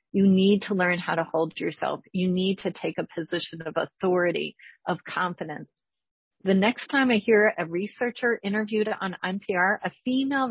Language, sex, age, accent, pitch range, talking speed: English, female, 40-59, American, 180-255 Hz, 170 wpm